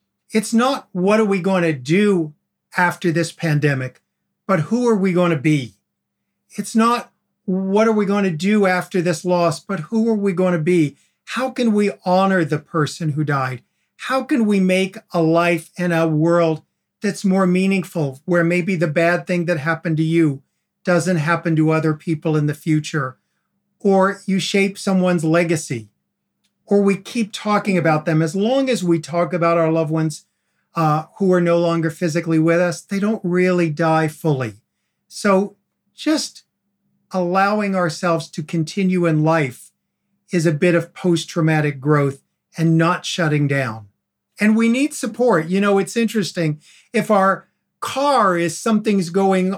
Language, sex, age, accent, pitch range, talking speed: English, male, 50-69, American, 160-200 Hz, 165 wpm